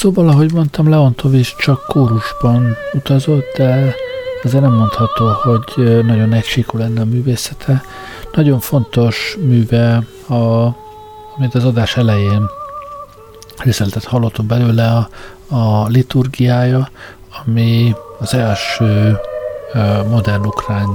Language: Hungarian